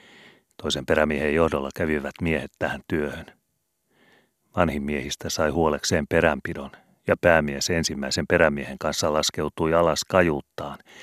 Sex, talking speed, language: male, 110 wpm, Finnish